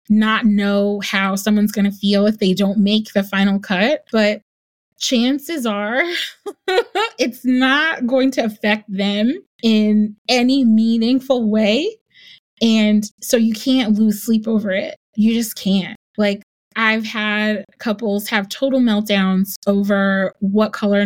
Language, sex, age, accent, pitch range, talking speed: English, female, 20-39, American, 205-250 Hz, 135 wpm